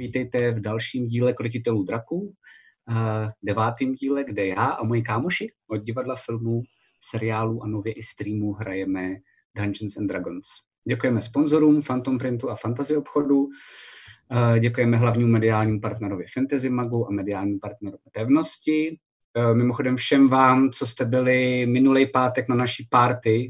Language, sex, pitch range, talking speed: Czech, male, 115-135 Hz, 135 wpm